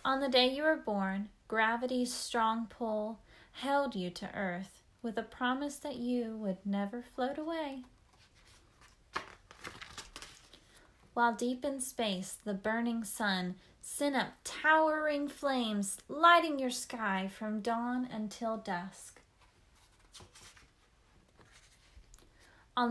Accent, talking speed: American, 105 wpm